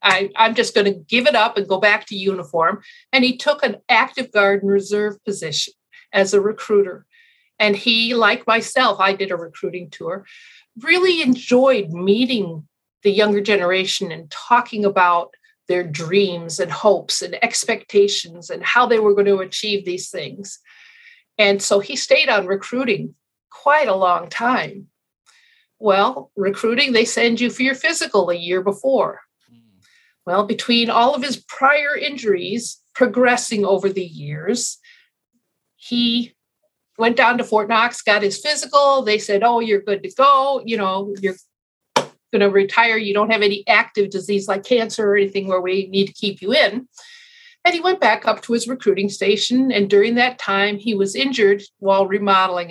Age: 50-69